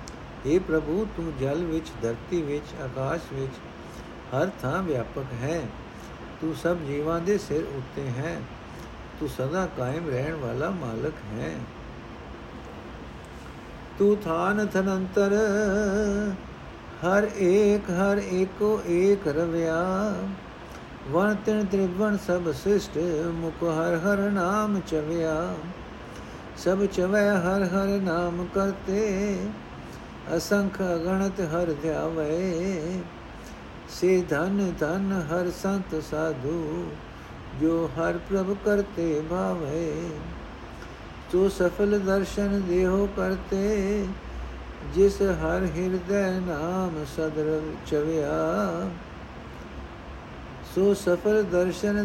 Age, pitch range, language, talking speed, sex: 60-79, 155-195 Hz, Punjabi, 95 wpm, male